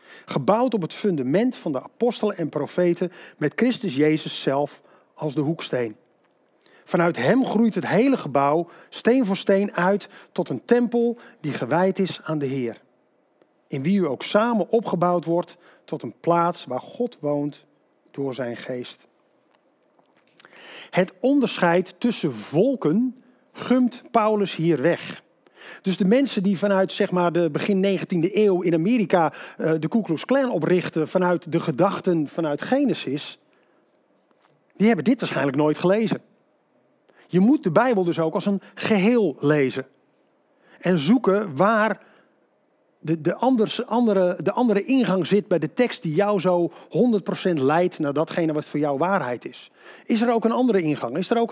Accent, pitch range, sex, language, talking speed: Dutch, 160-220 Hz, male, Dutch, 150 wpm